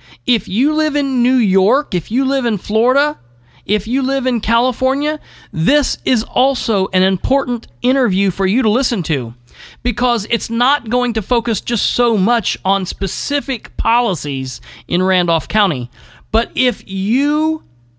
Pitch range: 175-245 Hz